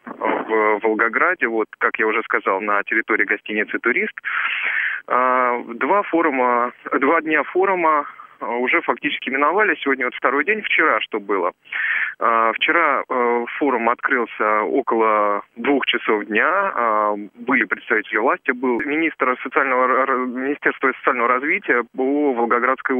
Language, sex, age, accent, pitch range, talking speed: Russian, male, 20-39, native, 110-130 Hz, 110 wpm